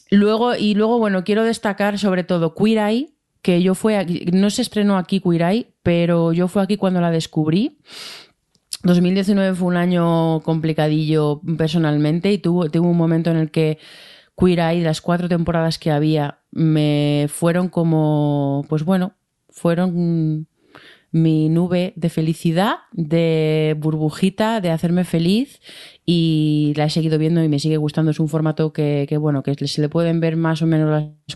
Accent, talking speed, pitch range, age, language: Spanish, 165 wpm, 150-180 Hz, 30-49, Spanish